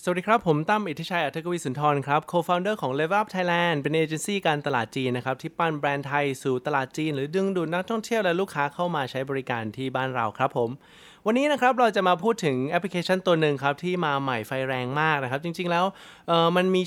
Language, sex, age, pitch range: Thai, male, 20-39, 130-175 Hz